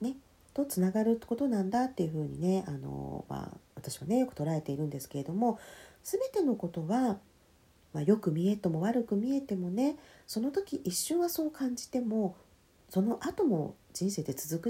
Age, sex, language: 40-59, female, Japanese